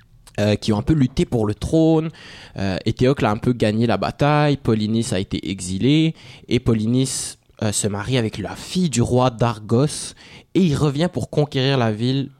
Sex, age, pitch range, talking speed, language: male, 20-39, 105-125 Hz, 190 wpm, English